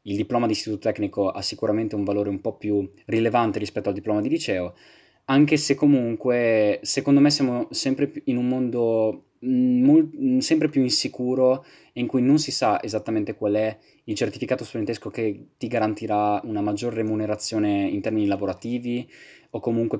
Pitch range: 105-130 Hz